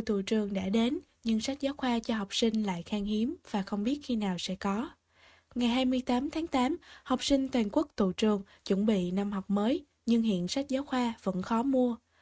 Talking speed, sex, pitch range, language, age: 215 wpm, female, 210-265 Hz, Vietnamese, 10-29